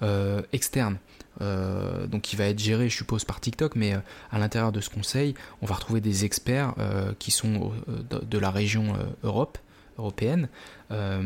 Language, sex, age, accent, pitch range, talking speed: French, male, 20-39, French, 105-120 Hz, 170 wpm